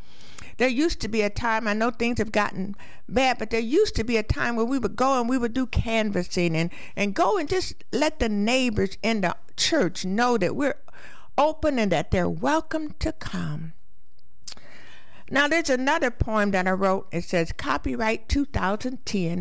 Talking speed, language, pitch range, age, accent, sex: 185 wpm, English, 195-285 Hz, 60-79, American, female